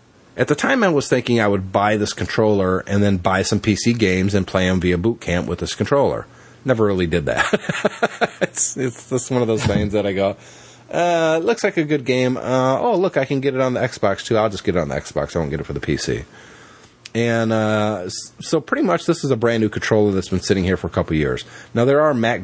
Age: 30-49